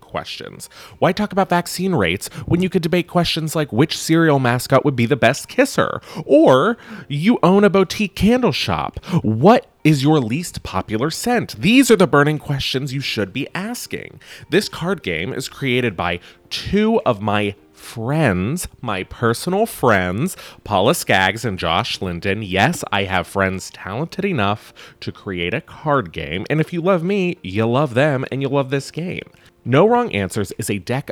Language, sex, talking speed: English, male, 175 wpm